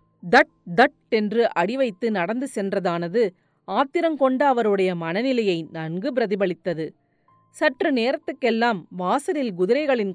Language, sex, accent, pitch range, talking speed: Tamil, female, native, 185-255 Hz, 95 wpm